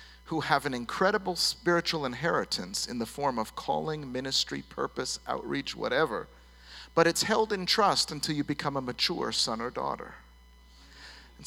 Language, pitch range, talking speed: English, 120-185 Hz, 150 wpm